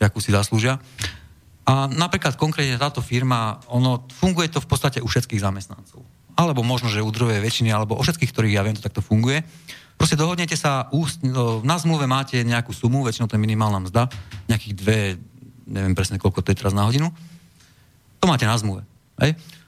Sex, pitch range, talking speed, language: male, 100-135 Hz, 175 wpm, Slovak